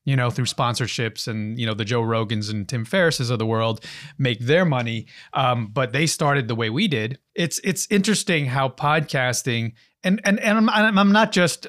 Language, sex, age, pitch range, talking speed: English, male, 30-49, 120-160 Hz, 200 wpm